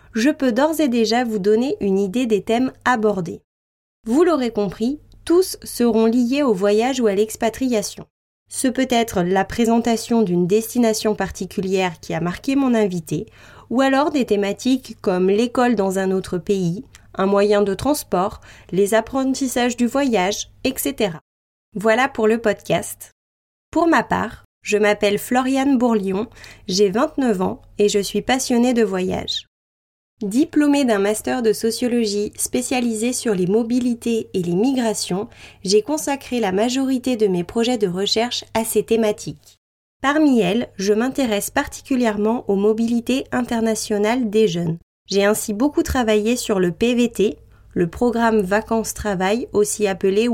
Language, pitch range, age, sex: French, 205-250 Hz, 20-39, female